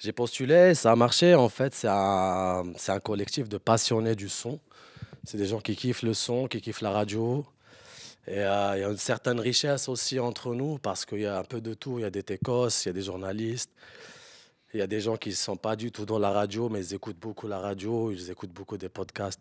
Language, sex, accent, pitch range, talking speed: French, male, French, 95-120 Hz, 250 wpm